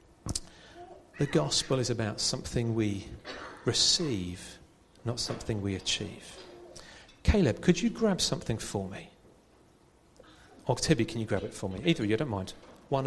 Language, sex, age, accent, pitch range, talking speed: English, male, 40-59, British, 110-150 Hz, 140 wpm